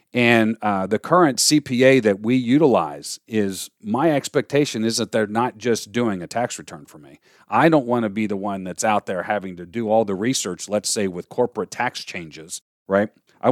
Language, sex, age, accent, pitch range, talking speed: English, male, 40-59, American, 105-140 Hz, 205 wpm